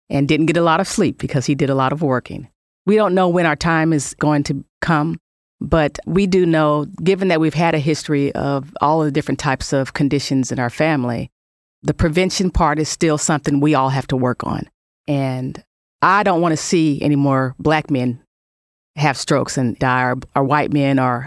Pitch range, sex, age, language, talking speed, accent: 130-155 Hz, female, 40-59, English, 215 wpm, American